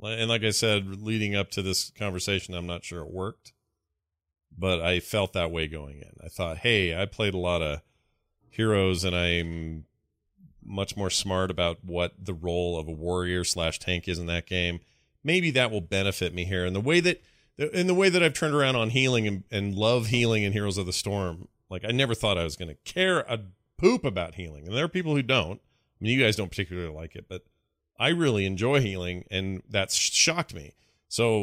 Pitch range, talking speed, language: 90-115 Hz, 215 wpm, English